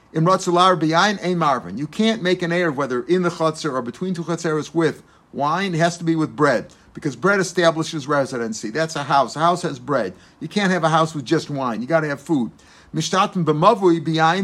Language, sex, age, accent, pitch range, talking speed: English, male, 50-69, American, 155-185 Hz, 200 wpm